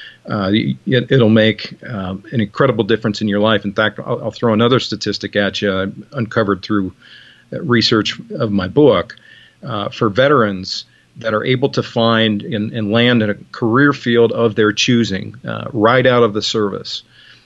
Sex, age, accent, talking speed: male, 50-69, American, 170 wpm